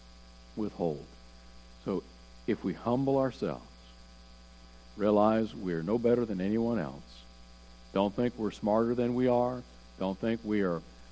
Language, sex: English, male